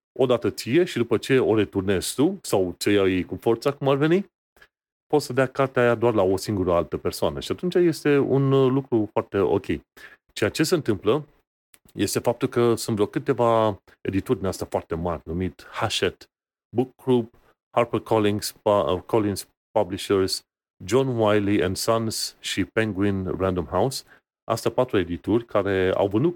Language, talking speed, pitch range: Romanian, 160 wpm, 95-125 Hz